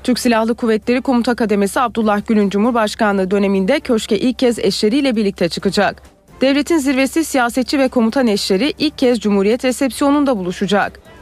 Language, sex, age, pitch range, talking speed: Turkish, female, 30-49, 195-245 Hz, 140 wpm